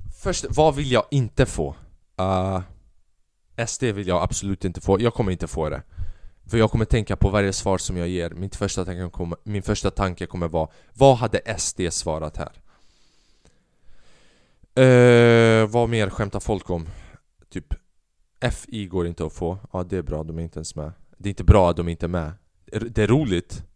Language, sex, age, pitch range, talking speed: Swedish, male, 20-39, 85-110 Hz, 190 wpm